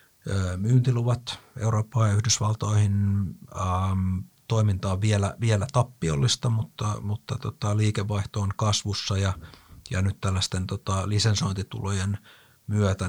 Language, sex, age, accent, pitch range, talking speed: Finnish, male, 50-69, native, 95-115 Hz, 100 wpm